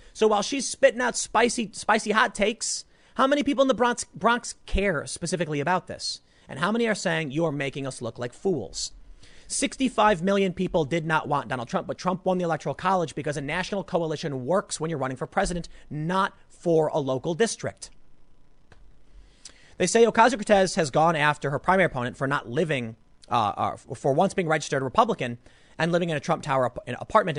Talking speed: 190 wpm